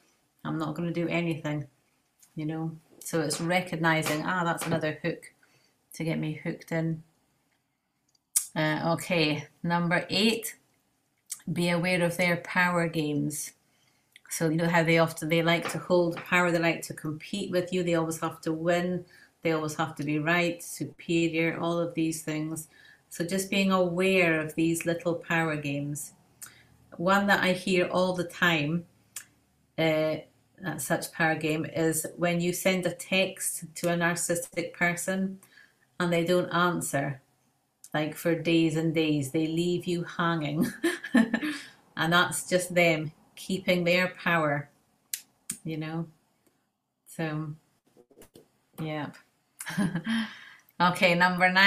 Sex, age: female, 30-49